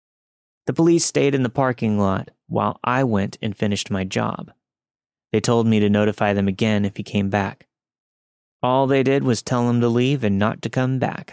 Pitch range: 100-125 Hz